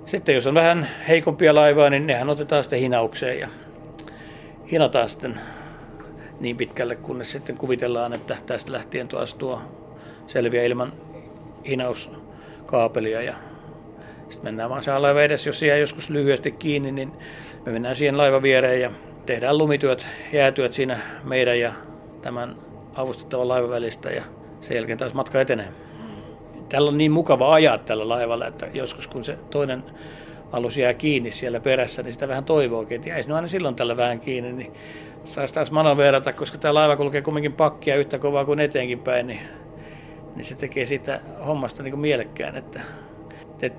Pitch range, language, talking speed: 125-155 Hz, Finnish, 155 wpm